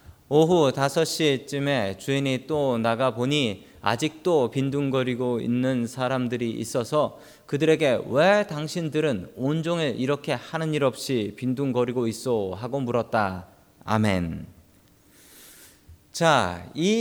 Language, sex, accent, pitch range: Korean, male, native, 120-170 Hz